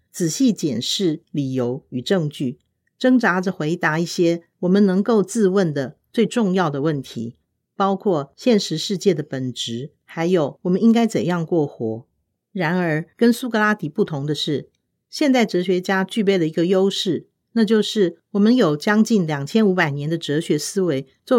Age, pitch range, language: 50-69, 150-210 Hz, Chinese